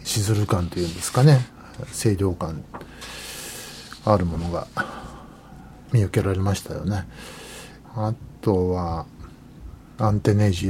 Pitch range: 95-120 Hz